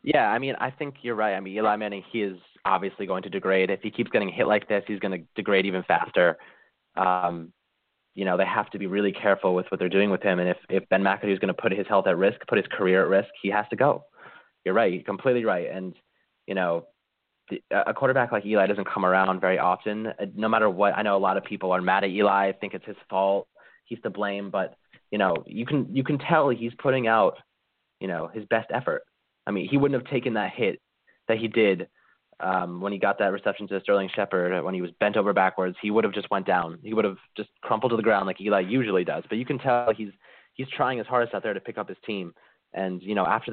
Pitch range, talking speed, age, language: 95-110 Hz, 260 wpm, 20-39, English